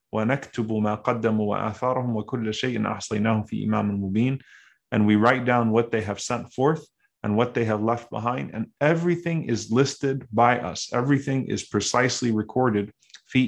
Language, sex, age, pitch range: English, male, 30-49, 110-130 Hz